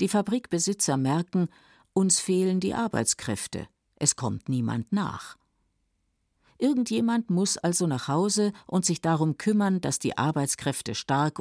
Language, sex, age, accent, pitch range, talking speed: German, female, 50-69, German, 130-180 Hz, 125 wpm